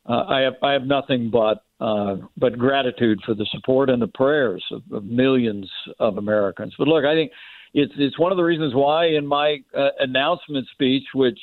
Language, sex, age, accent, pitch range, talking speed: English, male, 60-79, American, 125-145 Hz, 200 wpm